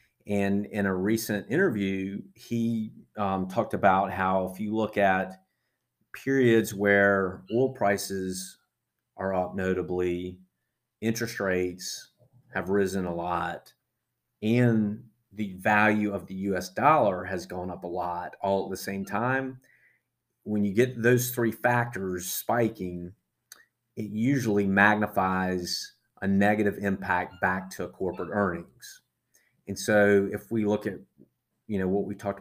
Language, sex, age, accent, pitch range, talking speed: English, male, 30-49, American, 95-110 Hz, 135 wpm